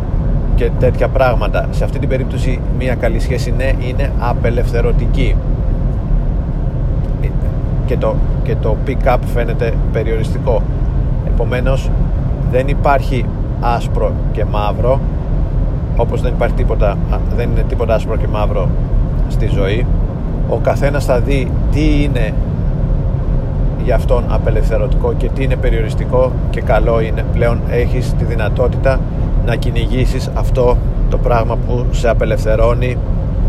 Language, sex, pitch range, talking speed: Greek, male, 110-130 Hz, 115 wpm